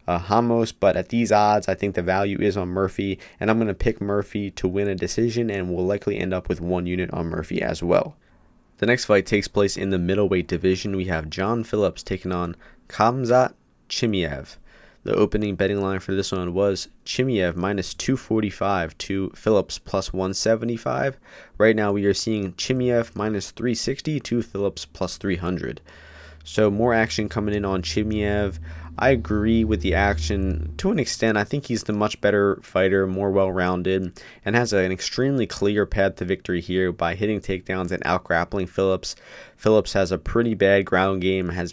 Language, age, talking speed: English, 20-39, 180 wpm